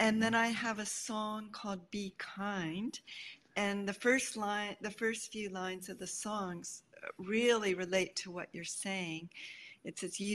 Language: English